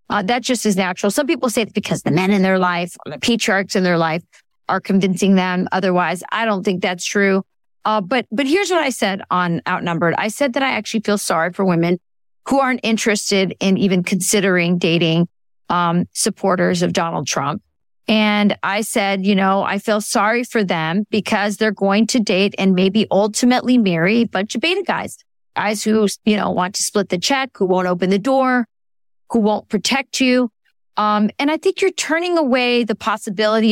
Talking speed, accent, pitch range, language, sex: 195 wpm, American, 190-240 Hz, English, female